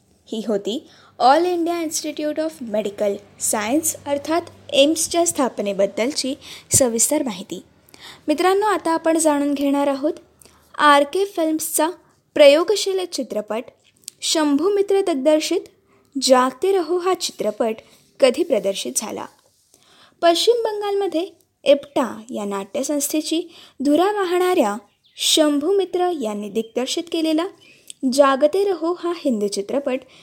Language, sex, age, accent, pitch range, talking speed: Marathi, female, 20-39, native, 240-340 Hz, 95 wpm